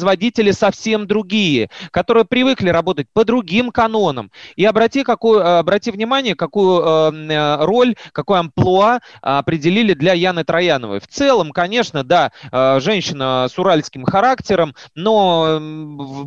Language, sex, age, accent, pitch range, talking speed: Russian, male, 30-49, native, 145-210 Hz, 120 wpm